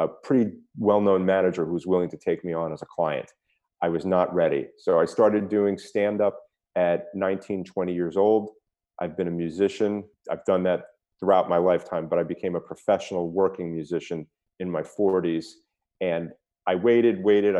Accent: American